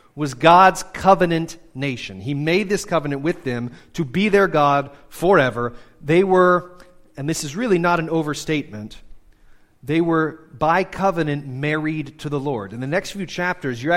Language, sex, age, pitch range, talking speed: English, male, 30-49, 130-165 Hz, 165 wpm